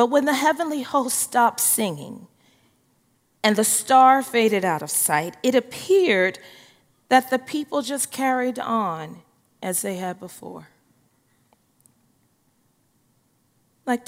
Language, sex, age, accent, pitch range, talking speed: English, female, 40-59, American, 180-240 Hz, 115 wpm